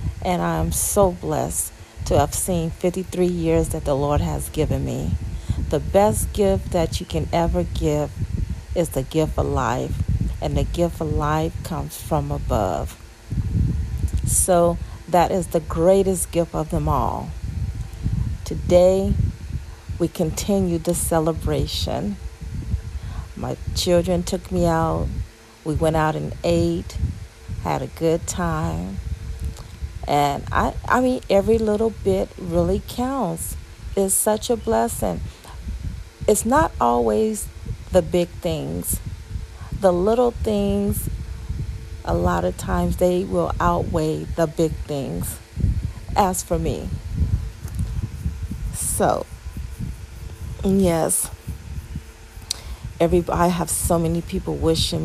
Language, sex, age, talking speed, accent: English, female, 40-59, 120 wpm, American